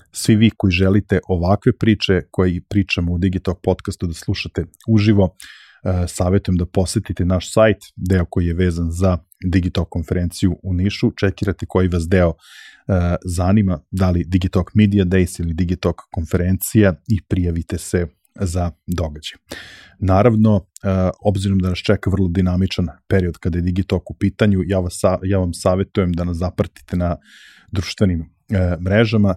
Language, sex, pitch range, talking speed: English, male, 90-100 Hz, 145 wpm